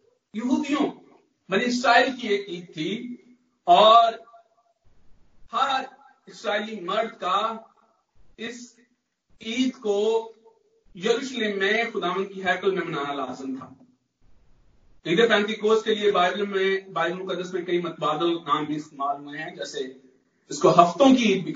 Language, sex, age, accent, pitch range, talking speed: Hindi, male, 50-69, native, 175-255 Hz, 115 wpm